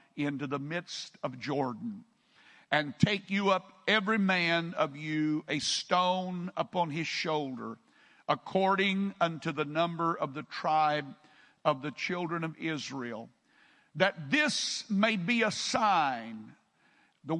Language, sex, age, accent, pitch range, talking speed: English, male, 50-69, American, 175-235 Hz, 130 wpm